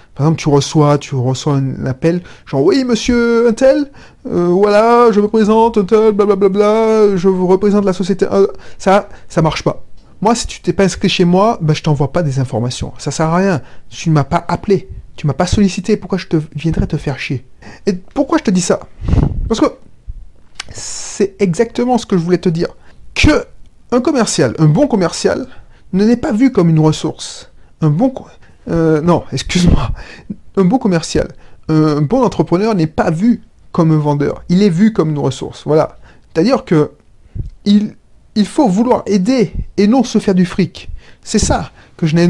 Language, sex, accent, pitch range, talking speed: French, male, French, 160-215 Hz, 195 wpm